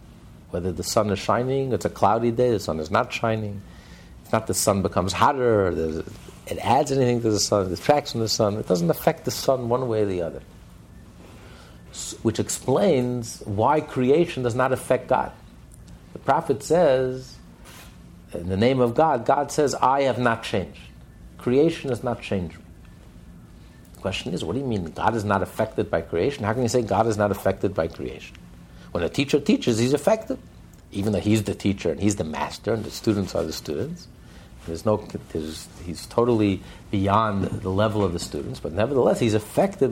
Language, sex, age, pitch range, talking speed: English, male, 60-79, 95-130 Hz, 185 wpm